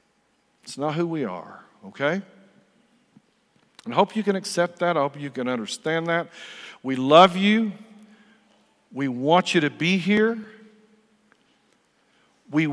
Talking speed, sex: 135 wpm, male